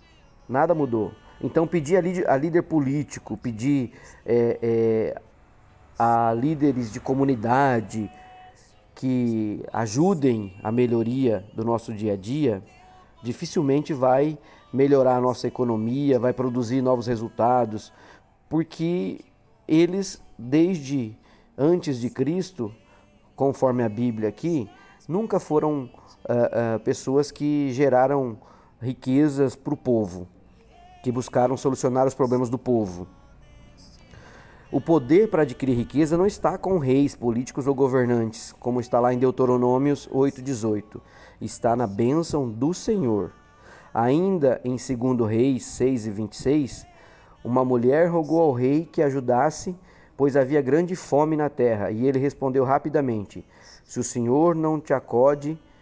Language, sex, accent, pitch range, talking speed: Portuguese, male, Brazilian, 120-145 Hz, 115 wpm